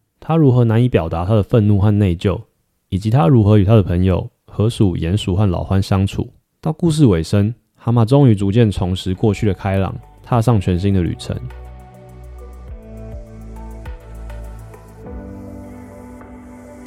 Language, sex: Chinese, male